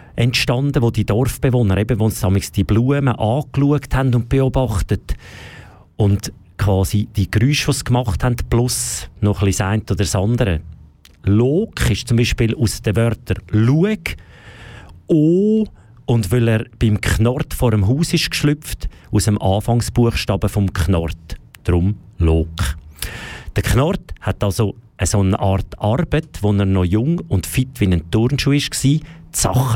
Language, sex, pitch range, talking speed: German, male, 90-120 Hz, 145 wpm